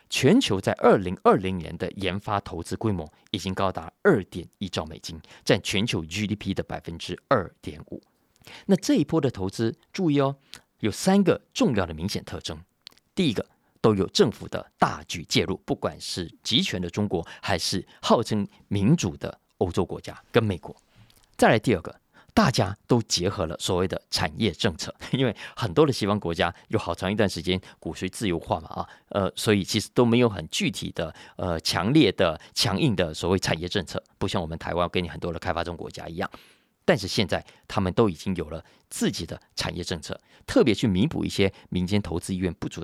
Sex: male